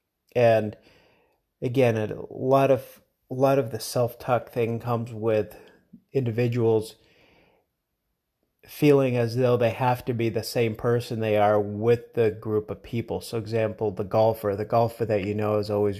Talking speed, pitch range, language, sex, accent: 160 wpm, 95-115 Hz, English, male, American